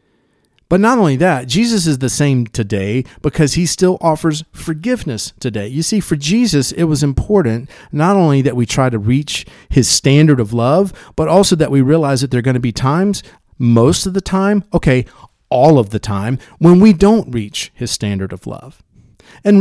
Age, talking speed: 40-59, 195 wpm